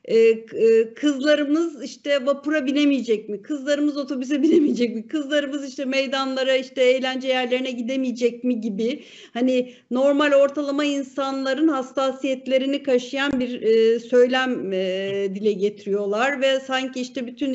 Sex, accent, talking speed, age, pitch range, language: female, native, 110 wpm, 50-69, 230-290 Hz, Turkish